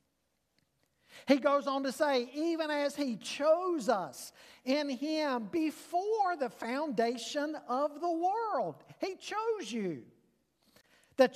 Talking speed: 115 wpm